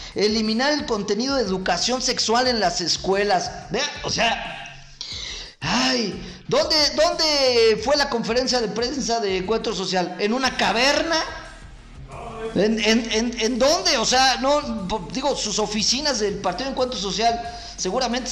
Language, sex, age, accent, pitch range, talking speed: Spanish, male, 40-59, Mexican, 205-255 Hz, 140 wpm